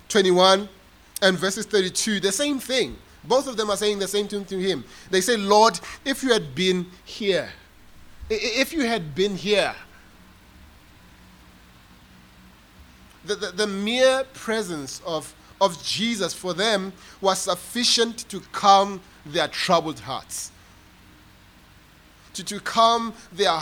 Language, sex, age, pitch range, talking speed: English, male, 30-49, 170-215 Hz, 130 wpm